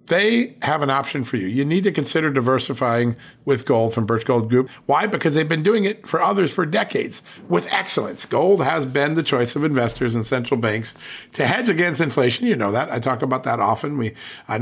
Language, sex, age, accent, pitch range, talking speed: English, male, 50-69, American, 120-175 Hz, 220 wpm